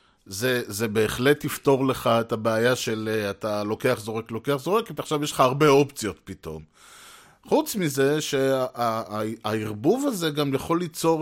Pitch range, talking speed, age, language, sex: 115-150 Hz, 150 wpm, 20-39, Hebrew, male